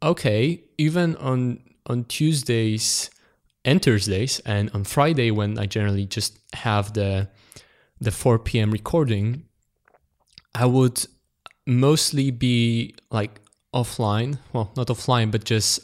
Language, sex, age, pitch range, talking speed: English, male, 20-39, 105-125 Hz, 115 wpm